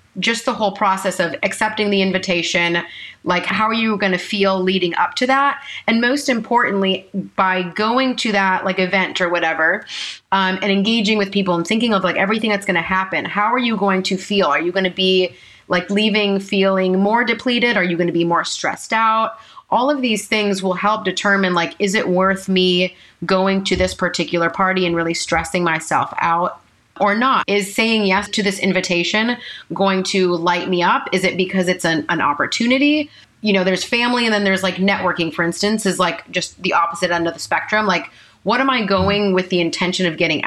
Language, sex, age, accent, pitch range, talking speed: English, female, 30-49, American, 180-215 Hz, 210 wpm